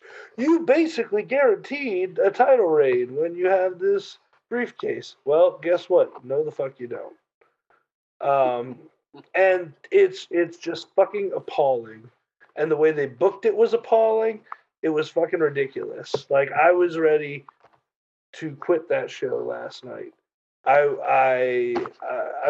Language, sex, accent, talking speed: English, male, American, 130 wpm